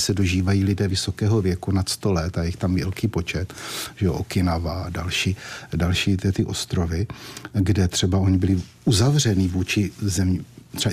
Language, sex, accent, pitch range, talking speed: Czech, male, native, 95-110 Hz, 170 wpm